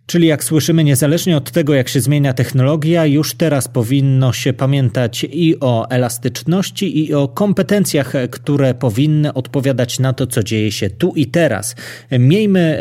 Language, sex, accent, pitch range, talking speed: Polish, male, native, 115-145 Hz, 155 wpm